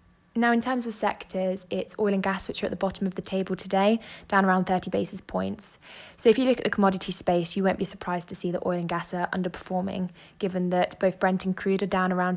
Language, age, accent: English, 20-39, British